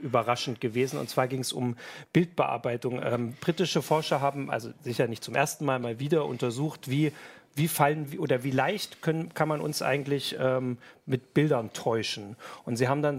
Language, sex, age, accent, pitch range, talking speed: German, male, 40-59, German, 125-150 Hz, 185 wpm